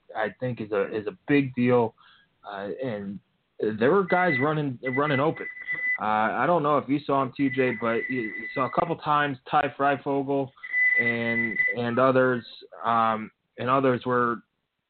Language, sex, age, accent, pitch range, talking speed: English, male, 20-39, American, 115-140 Hz, 165 wpm